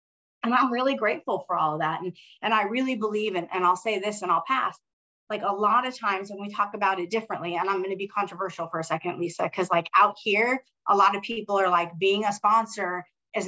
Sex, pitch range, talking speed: female, 175-210 Hz, 250 wpm